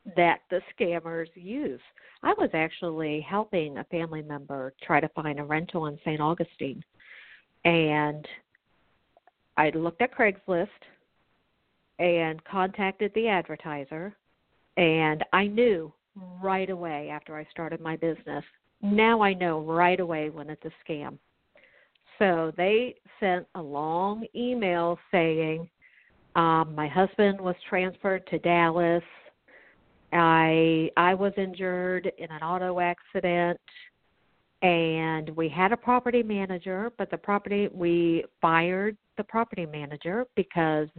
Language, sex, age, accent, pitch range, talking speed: English, female, 50-69, American, 155-185 Hz, 125 wpm